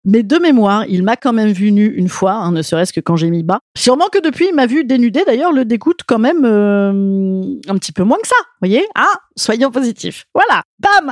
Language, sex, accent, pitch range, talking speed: French, female, French, 195-275 Hz, 245 wpm